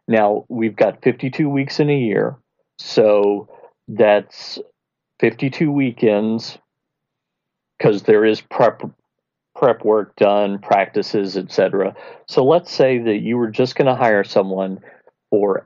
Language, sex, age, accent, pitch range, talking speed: English, male, 50-69, American, 105-135 Hz, 125 wpm